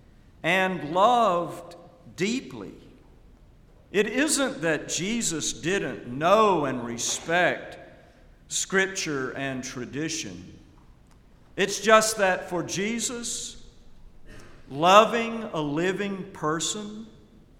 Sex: male